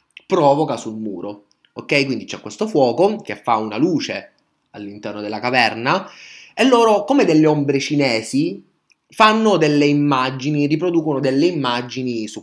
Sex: male